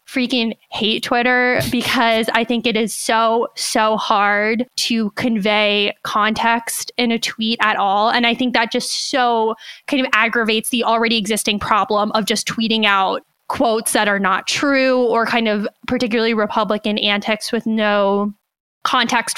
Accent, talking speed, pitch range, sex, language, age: American, 155 wpm, 220-255 Hz, female, English, 10-29